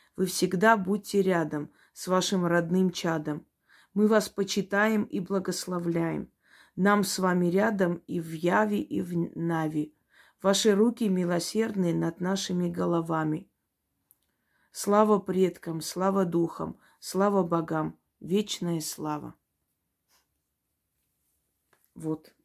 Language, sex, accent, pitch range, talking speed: Russian, female, native, 165-200 Hz, 100 wpm